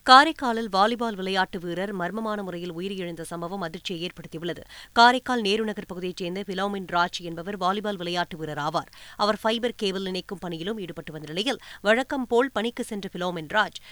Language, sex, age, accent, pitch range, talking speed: Tamil, female, 20-39, native, 185-235 Hz, 140 wpm